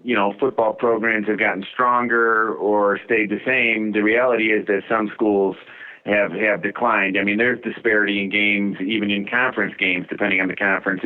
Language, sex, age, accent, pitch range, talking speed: English, male, 30-49, American, 100-115 Hz, 185 wpm